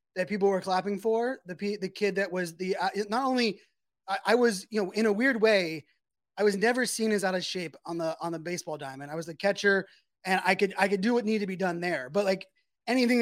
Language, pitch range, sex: English, 170-205 Hz, male